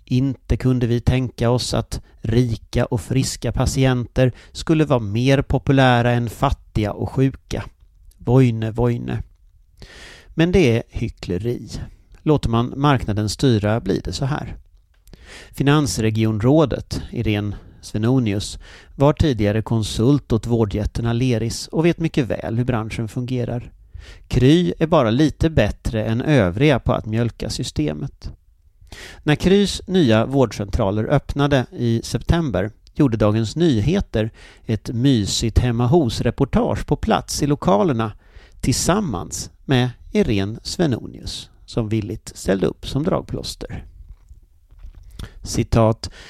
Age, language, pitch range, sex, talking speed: 40-59, English, 105-130 Hz, male, 115 wpm